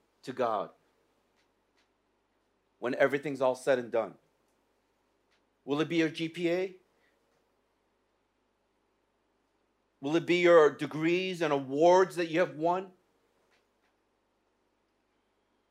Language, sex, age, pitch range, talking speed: English, male, 50-69, 135-175 Hz, 90 wpm